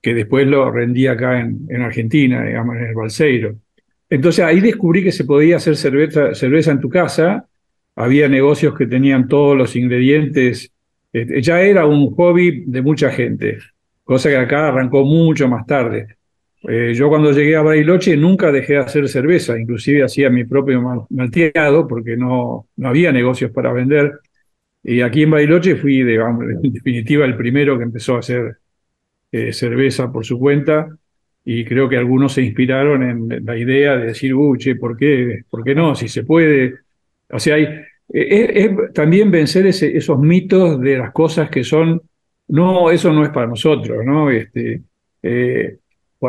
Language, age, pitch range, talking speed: Spanish, 50-69, 125-155 Hz, 170 wpm